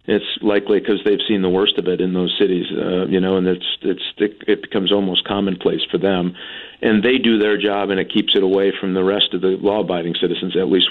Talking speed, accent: 235 wpm, American